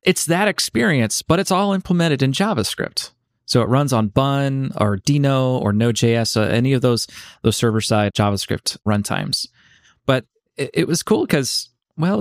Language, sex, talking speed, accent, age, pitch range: English, male, 160 wpm, American, 20-39, 110-140 Hz